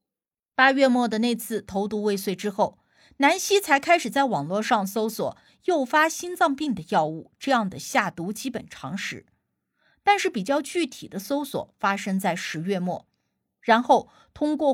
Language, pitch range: Chinese, 205-290 Hz